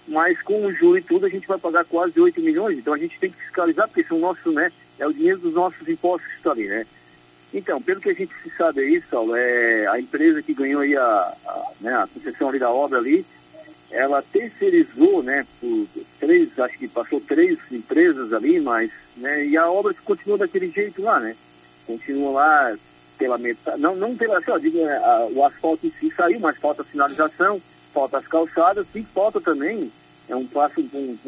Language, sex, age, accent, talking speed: Portuguese, male, 50-69, Brazilian, 210 wpm